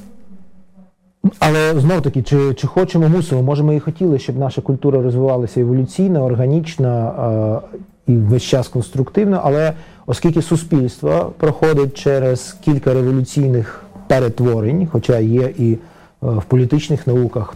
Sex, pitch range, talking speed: male, 120-160 Hz, 125 wpm